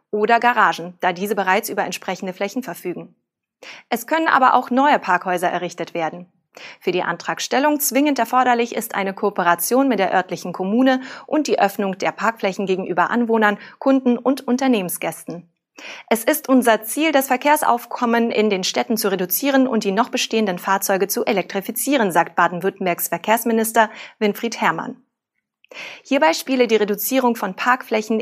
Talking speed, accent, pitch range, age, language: 145 wpm, German, 185-245 Hz, 30-49, German